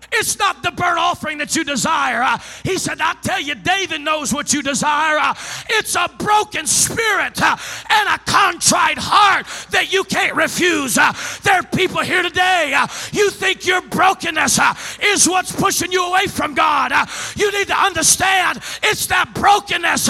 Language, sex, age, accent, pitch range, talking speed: English, male, 40-59, American, 320-380 Hz, 180 wpm